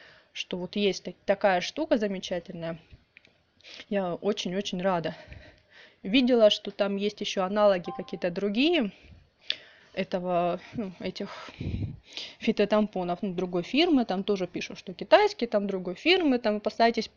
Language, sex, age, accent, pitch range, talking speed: Russian, female, 20-39, native, 180-220 Hz, 120 wpm